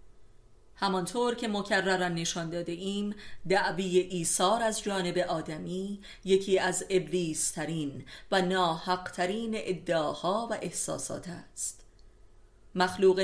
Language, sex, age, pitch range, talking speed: Persian, female, 30-49, 160-195 Hz, 95 wpm